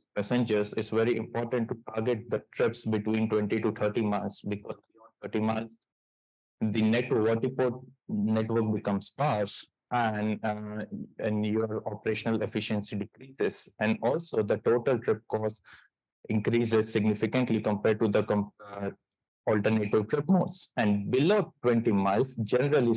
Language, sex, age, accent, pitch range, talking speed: English, male, 20-39, Indian, 105-120 Hz, 125 wpm